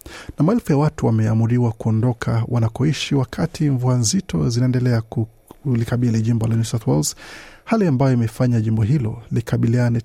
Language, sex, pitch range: Swahili, male, 115-145 Hz